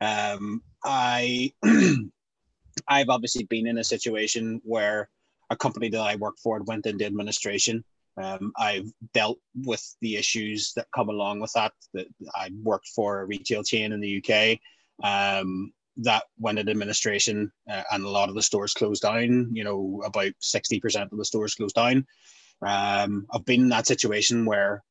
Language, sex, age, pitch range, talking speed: English, male, 30-49, 105-120 Hz, 165 wpm